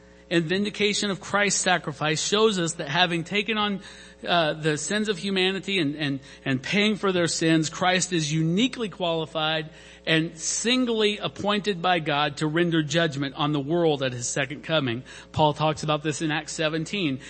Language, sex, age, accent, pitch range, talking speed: English, male, 50-69, American, 150-195 Hz, 170 wpm